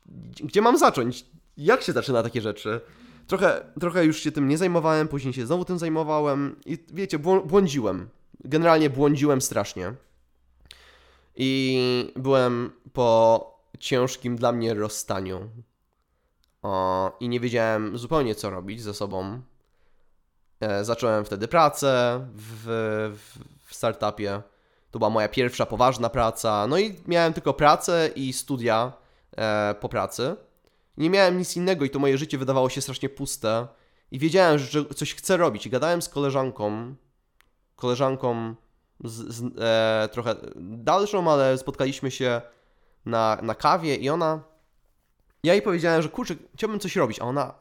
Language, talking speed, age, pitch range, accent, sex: Polish, 130 wpm, 20-39, 110-150 Hz, native, male